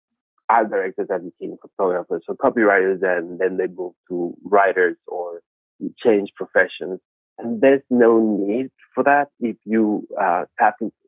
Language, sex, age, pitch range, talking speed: English, male, 30-49, 100-115 Hz, 130 wpm